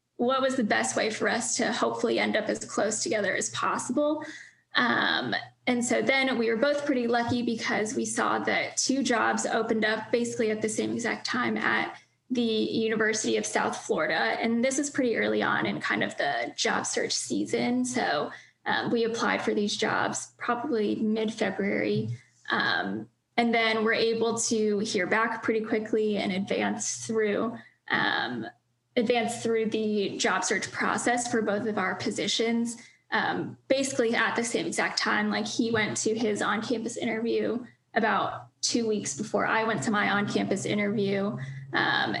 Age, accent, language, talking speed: 10-29, American, English, 165 wpm